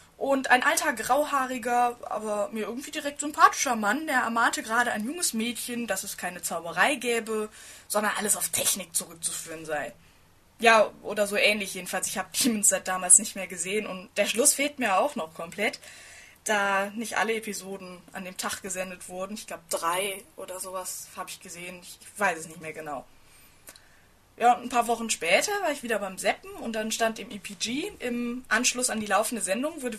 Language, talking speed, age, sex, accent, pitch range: German, 190 wpm, 20-39, female, German, 195-260 Hz